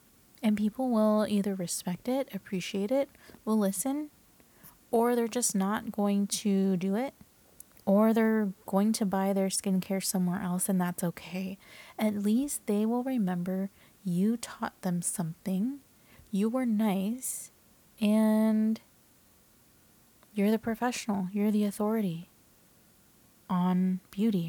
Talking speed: 125 wpm